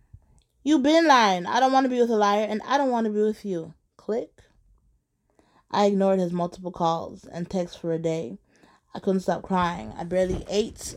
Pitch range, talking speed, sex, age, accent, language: 175-240 Hz, 200 wpm, female, 20-39, American, English